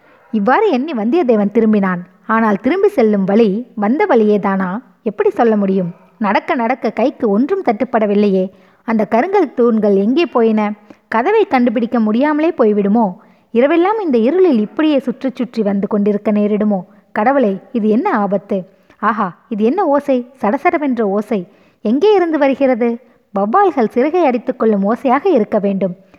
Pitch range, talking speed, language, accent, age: 205-260 Hz, 125 wpm, Tamil, native, 20-39